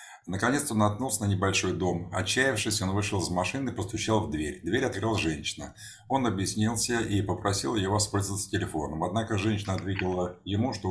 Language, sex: Russian, male